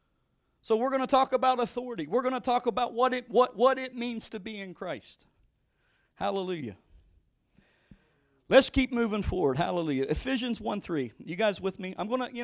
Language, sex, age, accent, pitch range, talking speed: English, male, 40-59, American, 165-220 Hz, 175 wpm